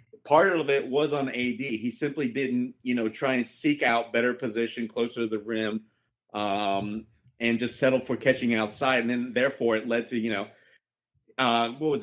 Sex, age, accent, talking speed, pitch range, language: male, 40-59, American, 195 wpm, 115-140 Hz, English